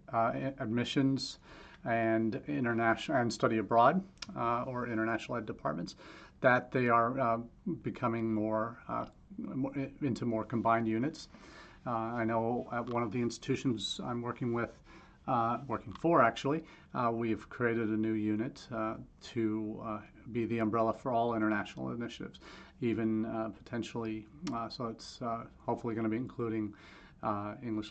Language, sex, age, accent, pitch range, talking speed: English, male, 40-59, American, 110-125 Hz, 145 wpm